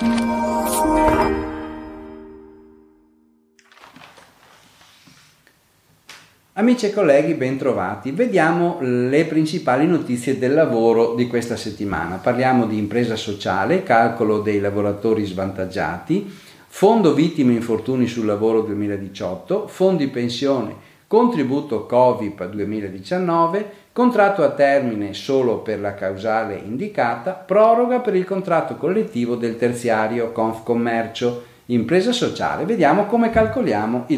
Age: 40-59